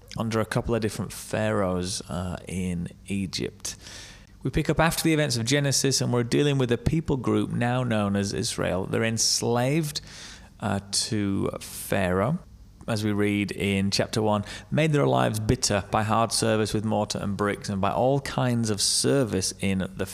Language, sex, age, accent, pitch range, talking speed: English, male, 30-49, British, 100-135 Hz, 175 wpm